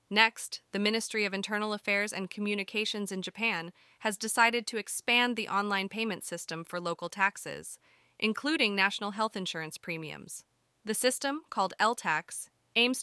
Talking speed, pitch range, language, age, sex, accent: 145 wpm, 190-235 Hz, English, 20-39, female, American